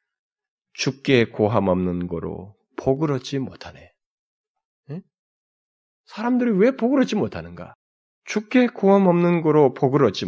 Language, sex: Korean, male